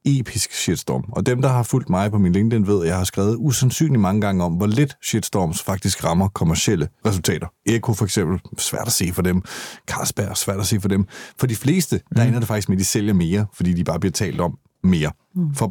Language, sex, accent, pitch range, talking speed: Danish, male, native, 100-135 Hz, 235 wpm